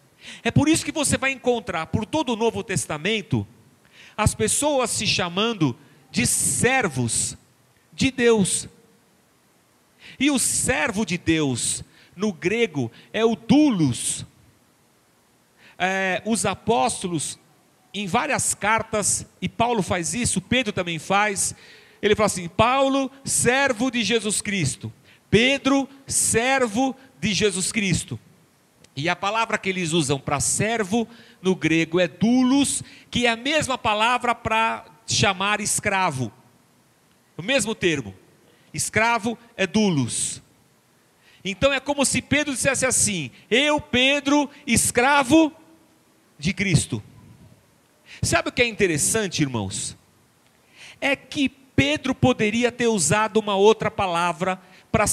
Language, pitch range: Portuguese, 165-245 Hz